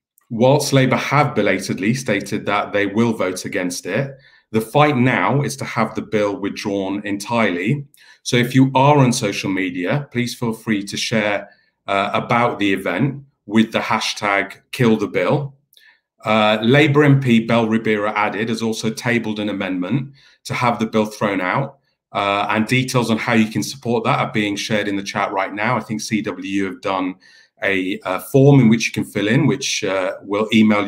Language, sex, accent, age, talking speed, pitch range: English, male, British, 40-59, 185 wpm, 105-125 Hz